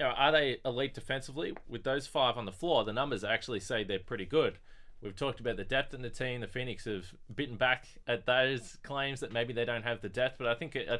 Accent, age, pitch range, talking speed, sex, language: Australian, 20-39, 100-130 Hz, 240 wpm, male, English